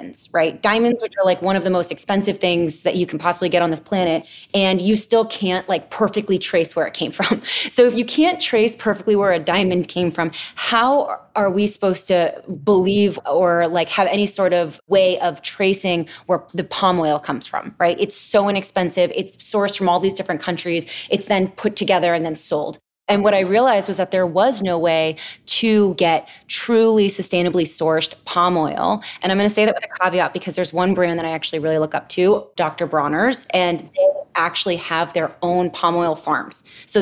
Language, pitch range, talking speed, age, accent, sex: English, 170-205 Hz, 210 wpm, 20-39, American, female